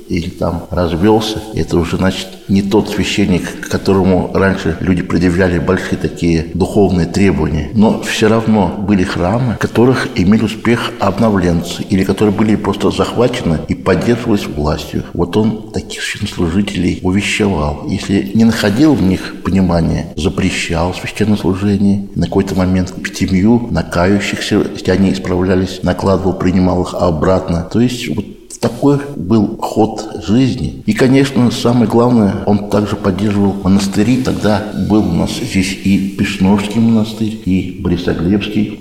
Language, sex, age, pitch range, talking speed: Russian, male, 60-79, 90-105 Hz, 135 wpm